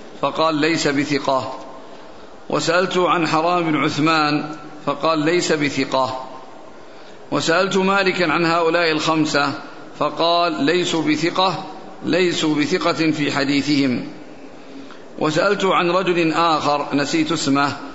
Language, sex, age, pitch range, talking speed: Arabic, male, 50-69, 150-175 Hz, 95 wpm